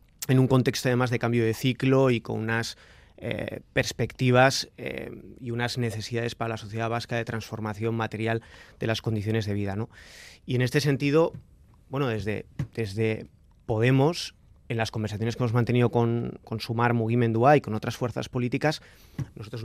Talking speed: 165 wpm